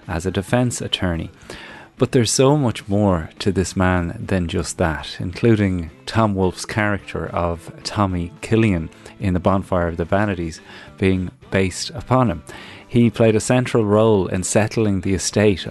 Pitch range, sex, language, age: 90-105 Hz, male, English, 30-49